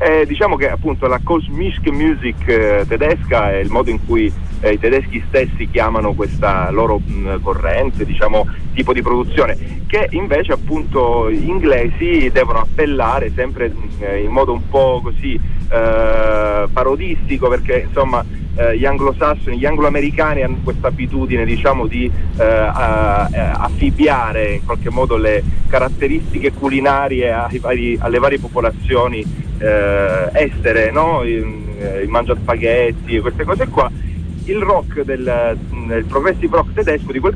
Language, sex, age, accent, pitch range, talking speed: Italian, male, 30-49, native, 100-140 Hz, 140 wpm